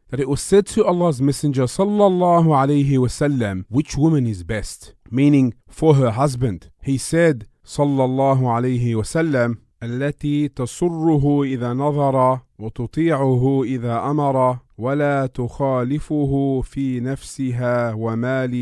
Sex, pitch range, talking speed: male, 110-140 Hz, 85 wpm